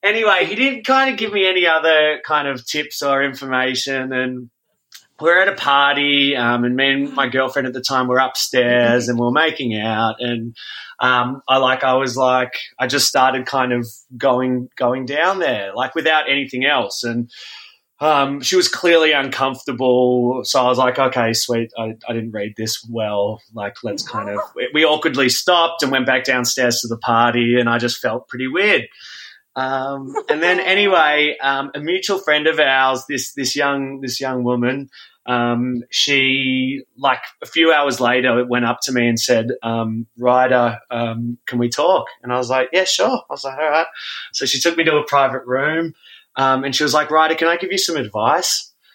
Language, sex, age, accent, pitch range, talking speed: English, male, 30-49, Australian, 120-145 Hz, 195 wpm